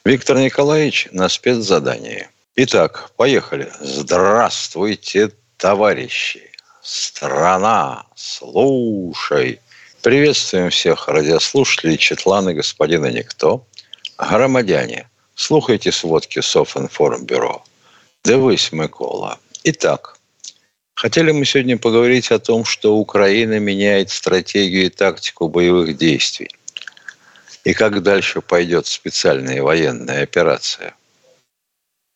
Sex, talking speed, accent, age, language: male, 85 wpm, native, 60-79, Russian